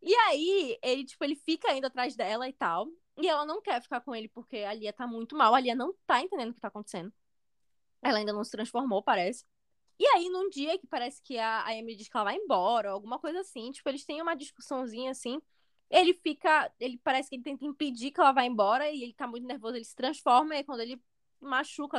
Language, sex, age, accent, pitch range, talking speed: Portuguese, female, 10-29, Brazilian, 210-300 Hz, 235 wpm